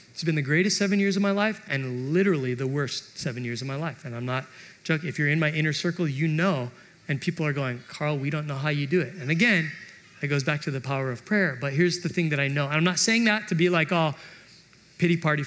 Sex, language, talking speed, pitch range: male, English, 270 wpm, 135-175 Hz